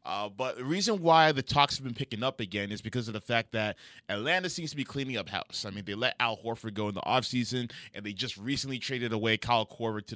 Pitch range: 110-135 Hz